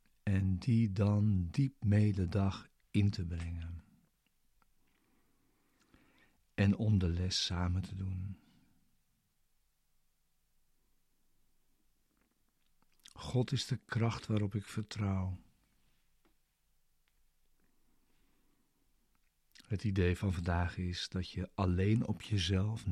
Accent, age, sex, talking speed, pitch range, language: Dutch, 60-79, male, 85 wpm, 90-110 Hz, Dutch